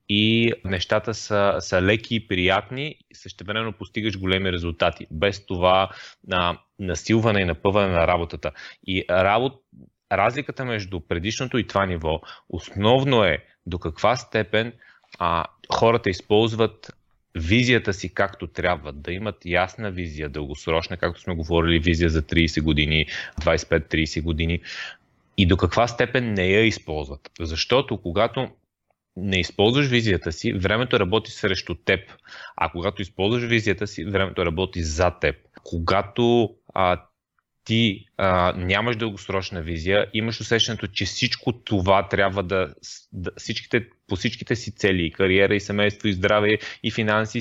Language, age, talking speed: Bulgarian, 30-49, 135 wpm